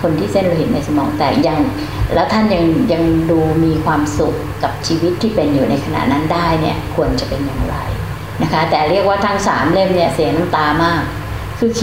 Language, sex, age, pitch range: Thai, female, 60-79, 130-185 Hz